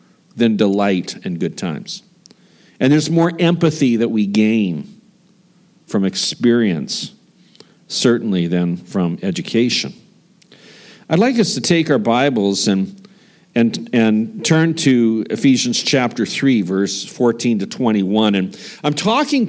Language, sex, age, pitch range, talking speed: English, male, 50-69, 110-180 Hz, 125 wpm